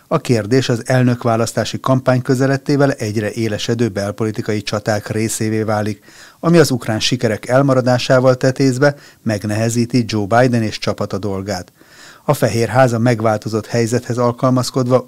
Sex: male